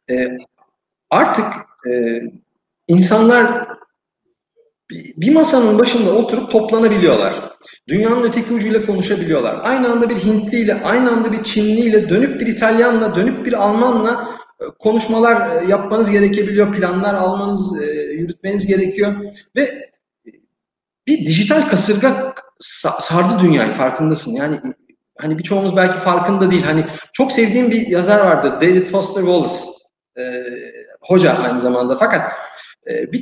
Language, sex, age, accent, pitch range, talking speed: Turkish, male, 50-69, native, 180-235 Hz, 115 wpm